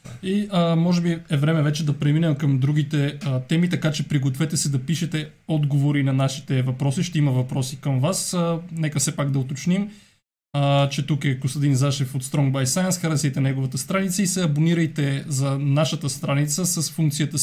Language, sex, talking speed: Bulgarian, male, 190 wpm